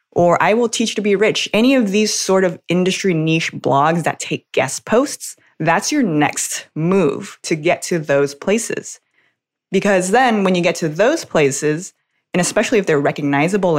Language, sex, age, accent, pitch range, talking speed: English, female, 20-39, American, 145-185 Hz, 185 wpm